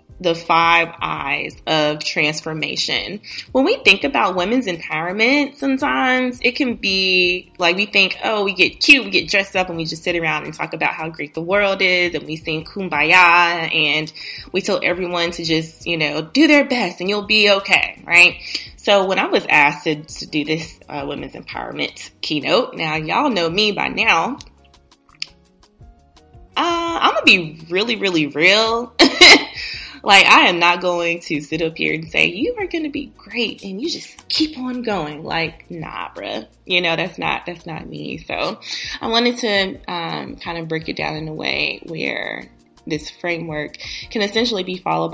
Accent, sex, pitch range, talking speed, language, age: American, female, 160-205 Hz, 185 wpm, English, 20-39